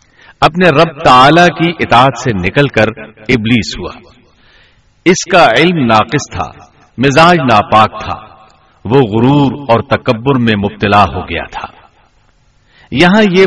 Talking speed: 130 wpm